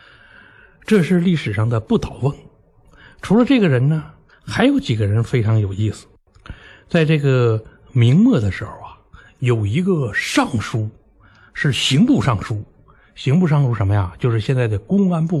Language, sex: Chinese, male